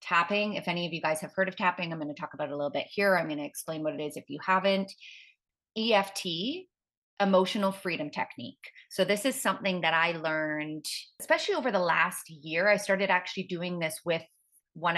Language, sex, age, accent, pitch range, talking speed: English, female, 30-49, American, 155-195 Hz, 210 wpm